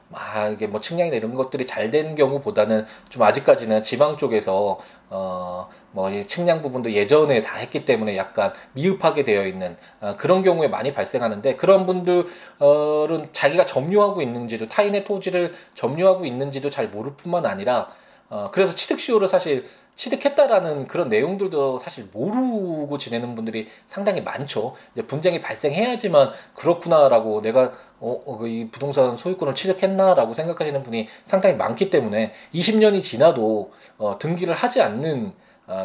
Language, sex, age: Korean, male, 20-39